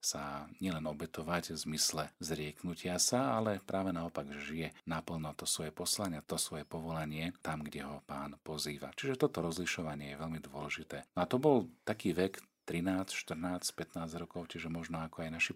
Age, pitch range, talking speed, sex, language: 40-59, 75-90 Hz, 165 wpm, male, Slovak